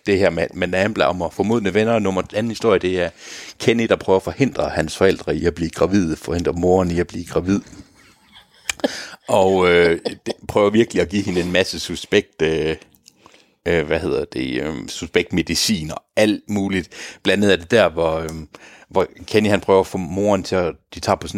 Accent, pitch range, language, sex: native, 90-115 Hz, Danish, male